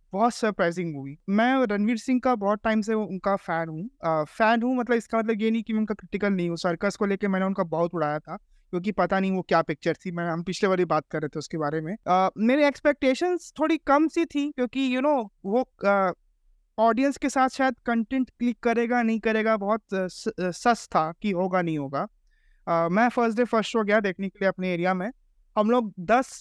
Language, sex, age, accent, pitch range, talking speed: Hindi, male, 20-39, native, 180-245 Hz, 220 wpm